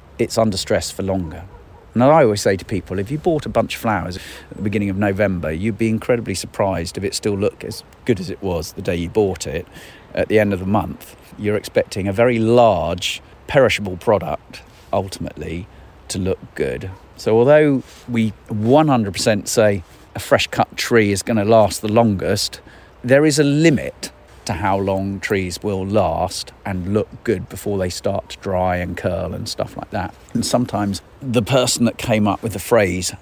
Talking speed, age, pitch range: 195 wpm, 40-59, 90-110 Hz